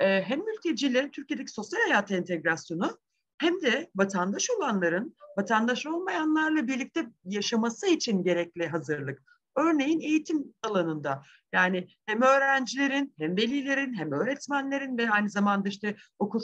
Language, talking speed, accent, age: Turkish, 115 wpm, native, 50-69